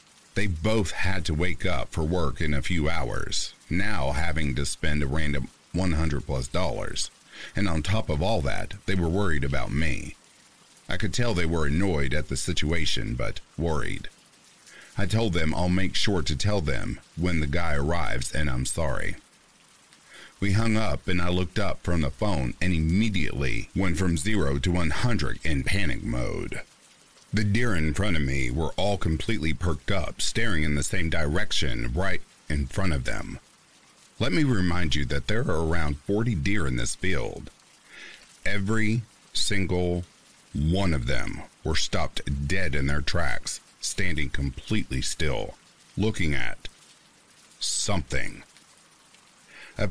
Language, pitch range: English, 75-95 Hz